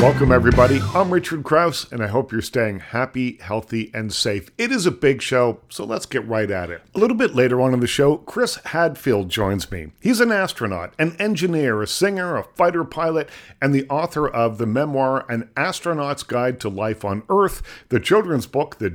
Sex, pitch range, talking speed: male, 115-155 Hz, 205 wpm